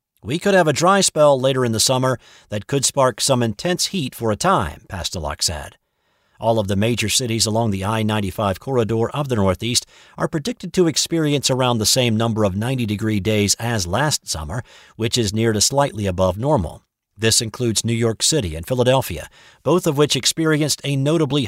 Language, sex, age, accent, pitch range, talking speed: English, male, 50-69, American, 105-140 Hz, 185 wpm